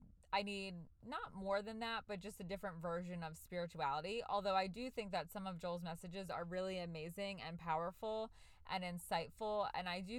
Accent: American